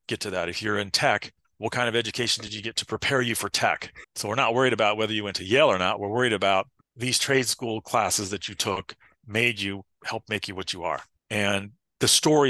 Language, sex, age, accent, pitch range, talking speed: English, male, 40-59, American, 105-130 Hz, 250 wpm